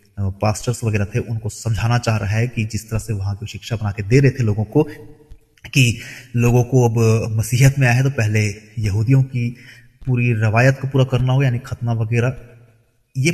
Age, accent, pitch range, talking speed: 30-49, native, 115-145 Hz, 195 wpm